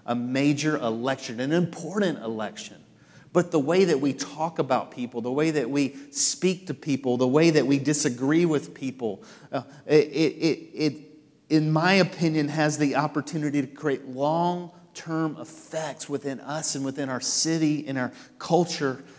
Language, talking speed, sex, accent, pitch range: English, 160 wpm, male, American, 130-160 Hz